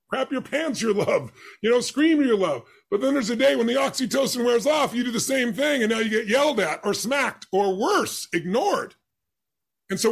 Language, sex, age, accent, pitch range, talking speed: English, female, 40-59, American, 215-270 Hz, 225 wpm